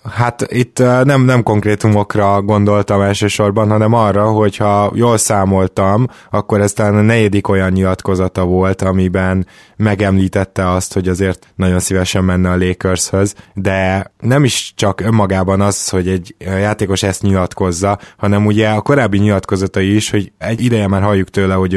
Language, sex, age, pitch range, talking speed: Hungarian, male, 20-39, 95-110 Hz, 150 wpm